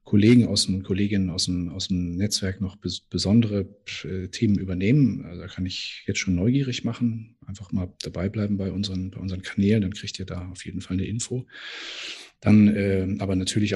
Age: 40-59